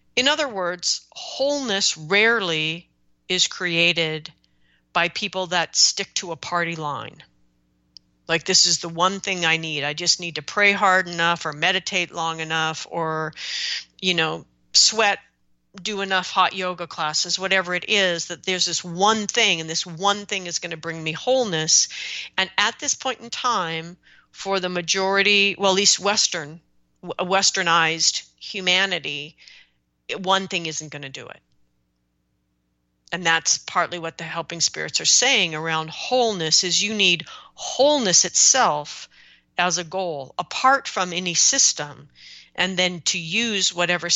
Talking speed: 150 wpm